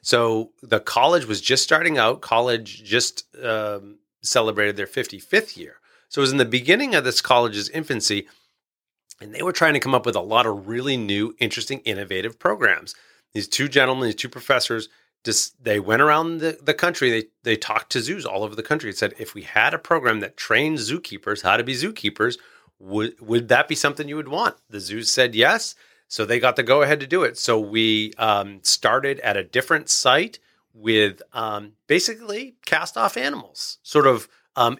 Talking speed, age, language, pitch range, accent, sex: 195 wpm, 30-49, English, 105-140 Hz, American, male